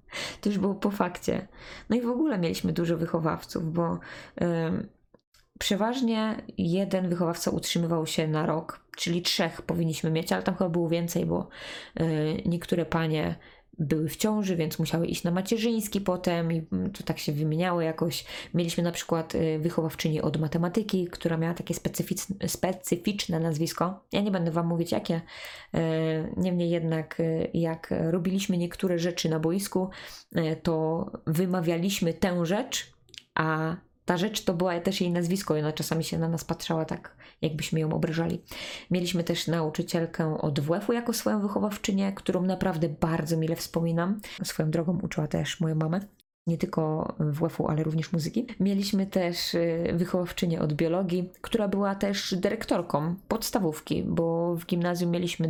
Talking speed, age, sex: 145 wpm, 20-39, female